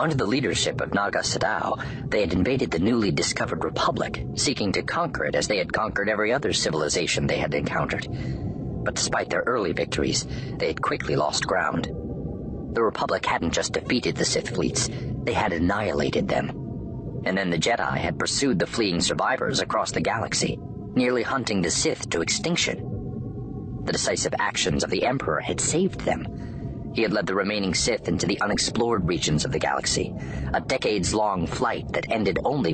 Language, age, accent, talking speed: English, 40-59, American, 175 wpm